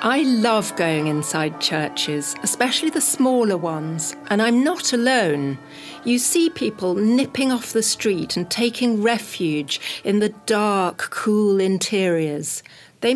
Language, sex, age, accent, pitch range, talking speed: Greek, female, 60-79, British, 165-230 Hz, 130 wpm